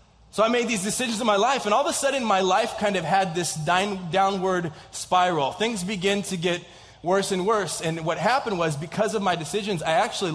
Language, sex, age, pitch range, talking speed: English, male, 20-39, 155-190 Hz, 225 wpm